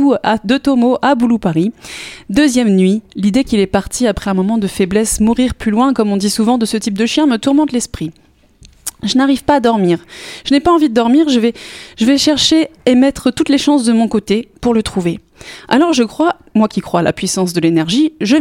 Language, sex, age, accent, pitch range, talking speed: French, female, 20-39, French, 205-270 Hz, 230 wpm